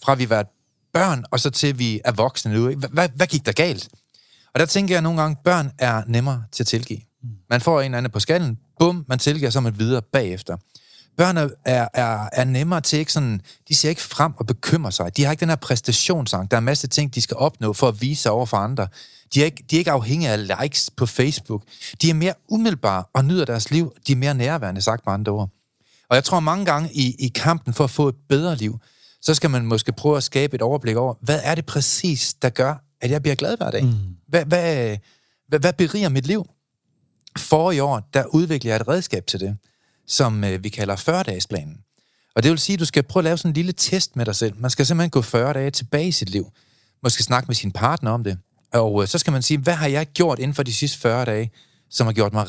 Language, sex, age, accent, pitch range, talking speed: Danish, male, 30-49, native, 115-155 Hz, 245 wpm